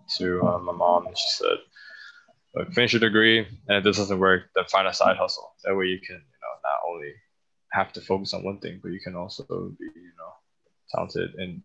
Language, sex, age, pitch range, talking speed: English, male, 20-39, 95-115 Hz, 220 wpm